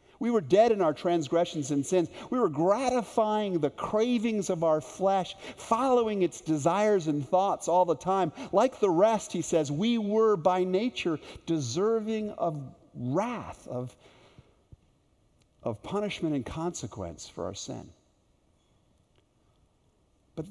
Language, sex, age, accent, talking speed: English, male, 50-69, American, 130 wpm